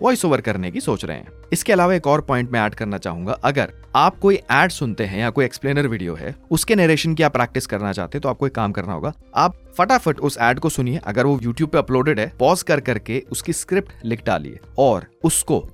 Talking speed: 150 wpm